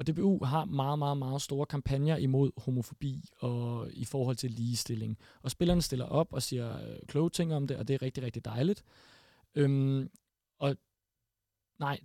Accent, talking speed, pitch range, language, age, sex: native, 170 wpm, 125-160 Hz, Danish, 30-49, male